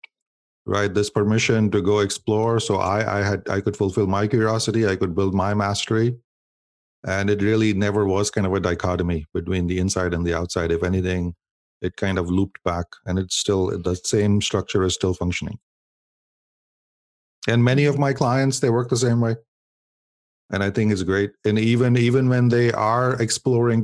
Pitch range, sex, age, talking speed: 95-115 Hz, male, 40-59, 185 wpm